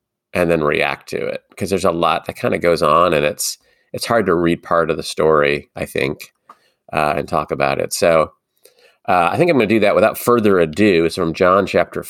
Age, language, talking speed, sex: 40-59, English, 235 wpm, male